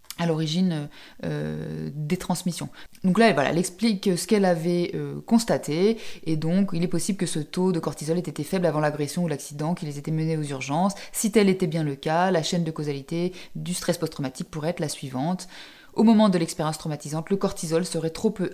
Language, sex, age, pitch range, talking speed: French, female, 20-39, 155-195 Hz, 215 wpm